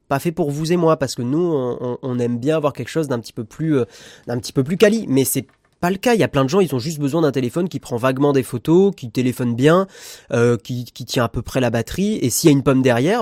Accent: French